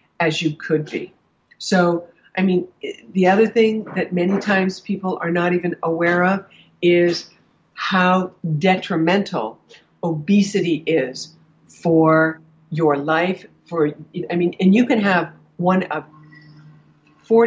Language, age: English, 60-79